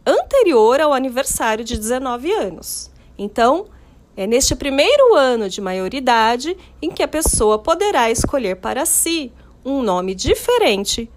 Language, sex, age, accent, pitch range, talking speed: Portuguese, female, 40-59, Brazilian, 210-300 Hz, 130 wpm